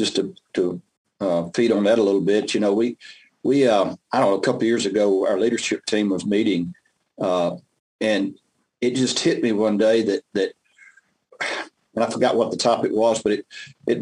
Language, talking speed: English, 205 wpm